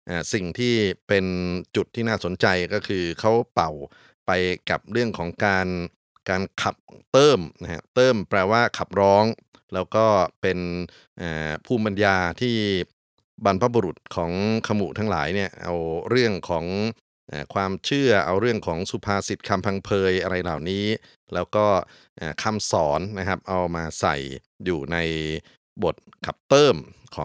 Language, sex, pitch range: Thai, male, 90-110 Hz